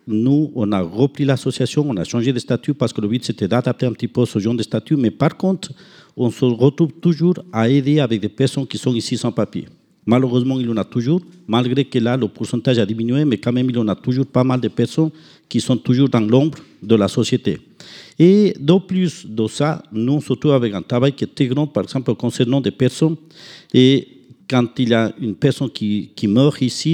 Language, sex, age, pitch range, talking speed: French, male, 50-69, 120-145 Hz, 230 wpm